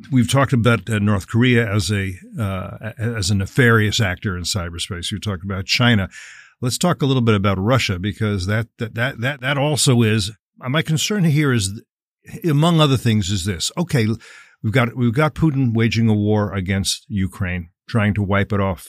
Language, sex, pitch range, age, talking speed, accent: English, male, 100-120 Hz, 50-69, 185 wpm, American